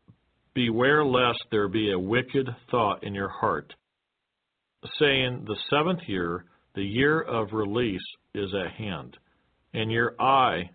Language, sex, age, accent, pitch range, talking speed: English, male, 50-69, American, 100-135 Hz, 135 wpm